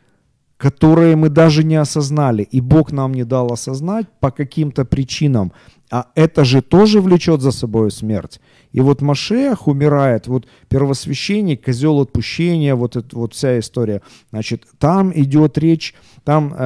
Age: 40-59